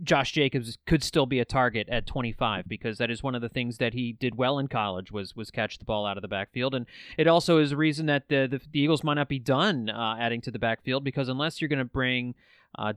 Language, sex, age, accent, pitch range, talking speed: English, male, 30-49, American, 125-170 Hz, 270 wpm